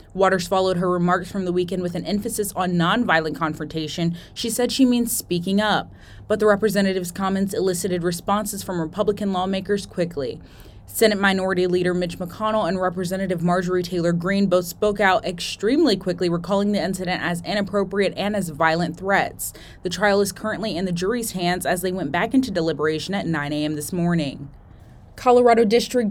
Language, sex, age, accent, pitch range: Japanese, female, 20-39, American, 180-220 Hz